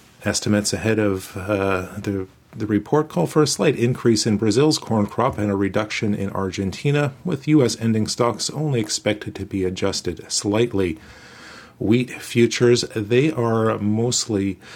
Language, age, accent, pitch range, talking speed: English, 40-59, American, 105-130 Hz, 145 wpm